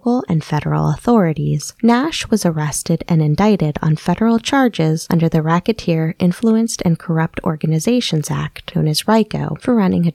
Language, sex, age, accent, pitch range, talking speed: English, female, 20-39, American, 160-210 Hz, 150 wpm